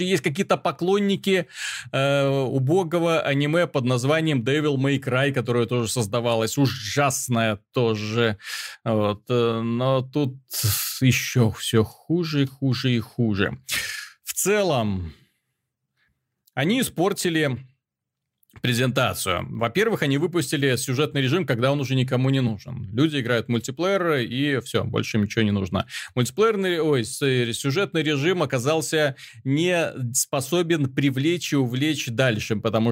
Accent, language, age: native, Russian, 30-49